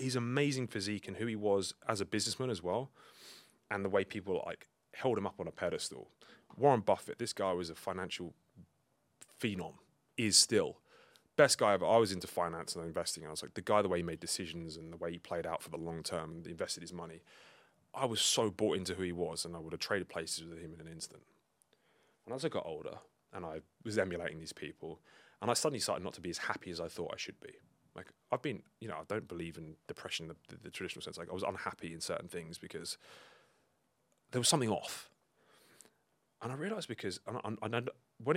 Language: Bulgarian